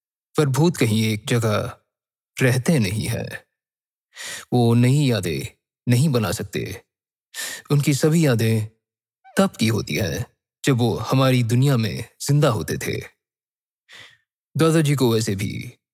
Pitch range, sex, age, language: 115-140 Hz, male, 20-39, Hindi